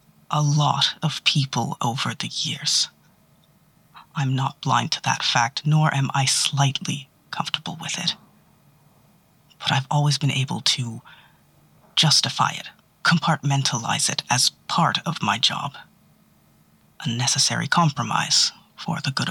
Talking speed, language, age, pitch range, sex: 125 wpm, English, 30-49, 125-155 Hz, female